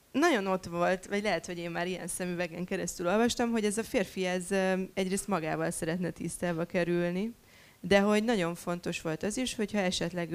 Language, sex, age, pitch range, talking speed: Hungarian, female, 20-39, 170-210 Hz, 180 wpm